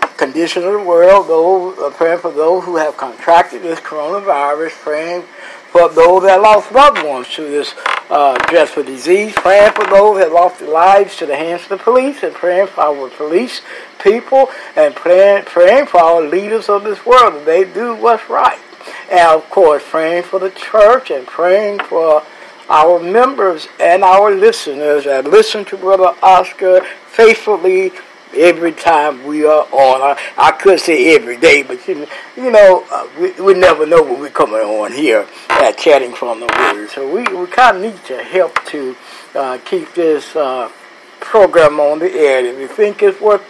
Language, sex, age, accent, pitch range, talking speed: English, male, 60-79, American, 160-250 Hz, 180 wpm